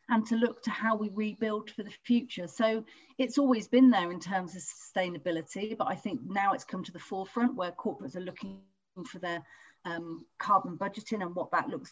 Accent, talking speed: British, 205 wpm